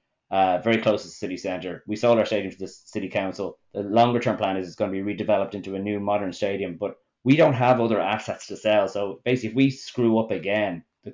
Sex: male